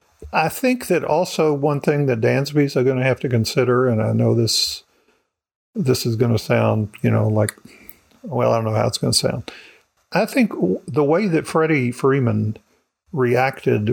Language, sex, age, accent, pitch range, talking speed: English, male, 50-69, American, 115-145 Hz, 185 wpm